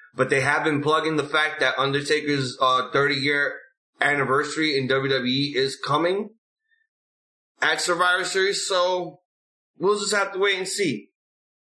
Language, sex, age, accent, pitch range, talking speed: English, male, 20-39, American, 140-190 Hz, 140 wpm